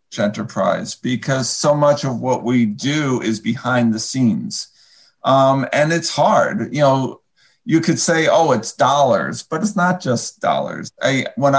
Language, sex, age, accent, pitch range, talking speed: English, male, 50-69, American, 115-145 Hz, 160 wpm